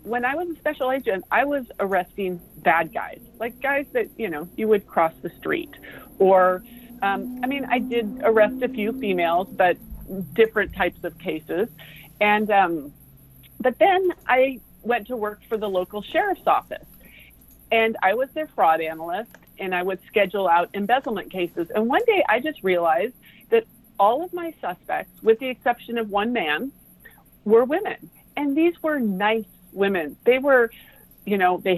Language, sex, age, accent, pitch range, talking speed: English, female, 40-59, American, 185-250 Hz, 170 wpm